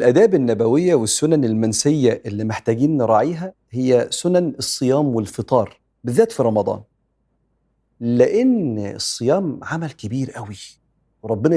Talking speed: 105 wpm